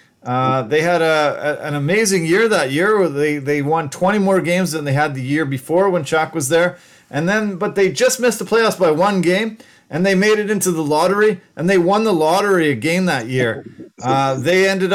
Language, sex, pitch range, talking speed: English, male, 145-185 Hz, 225 wpm